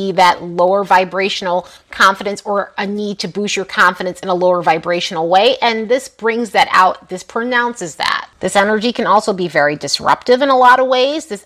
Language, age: English, 30-49